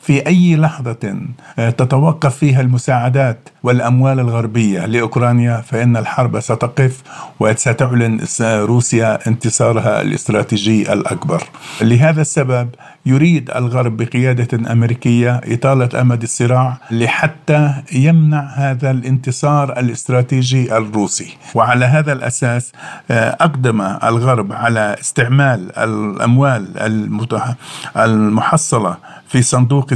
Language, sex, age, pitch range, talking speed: Arabic, male, 50-69, 115-135 Hz, 85 wpm